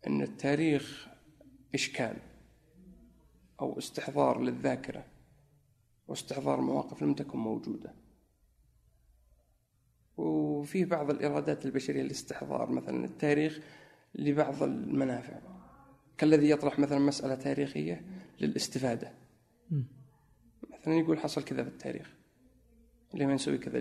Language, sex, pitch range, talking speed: Arabic, male, 125-155 Hz, 90 wpm